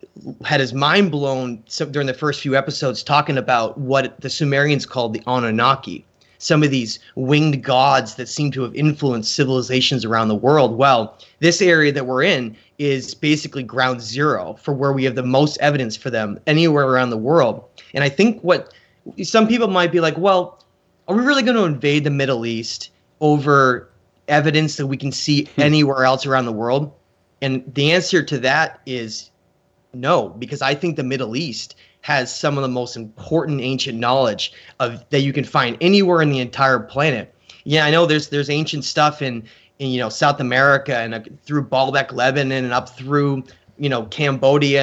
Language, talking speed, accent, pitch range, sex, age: English, 185 wpm, American, 125-150 Hz, male, 30-49